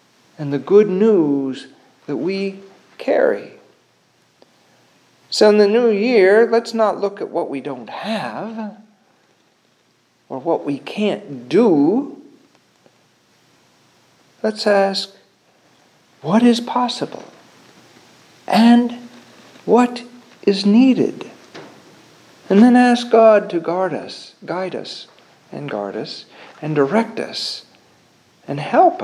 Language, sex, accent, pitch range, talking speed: English, male, American, 165-220 Hz, 105 wpm